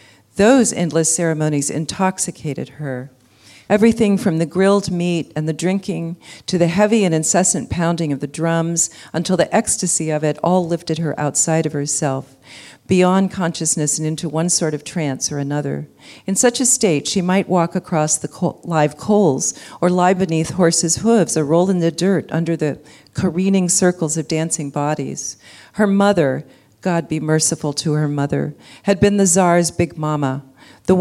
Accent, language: American, English